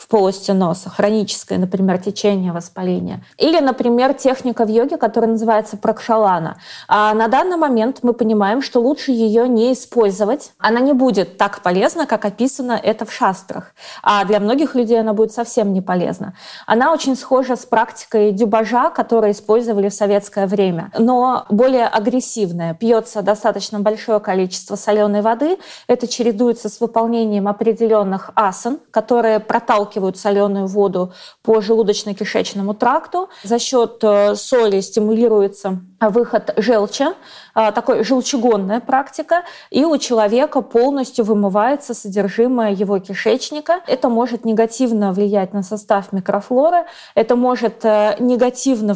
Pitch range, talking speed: 205-245 Hz, 125 wpm